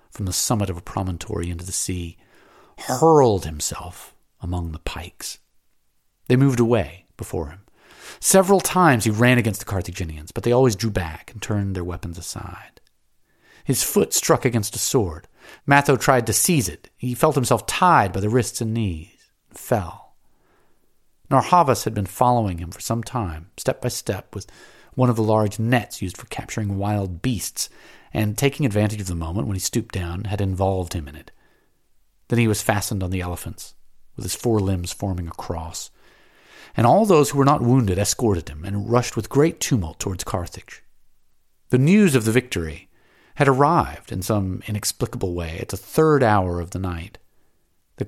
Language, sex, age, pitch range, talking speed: English, male, 40-59, 90-120 Hz, 180 wpm